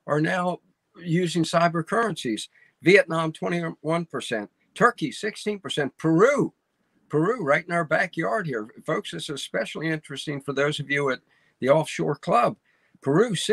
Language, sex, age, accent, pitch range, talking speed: English, male, 50-69, American, 140-180 Hz, 135 wpm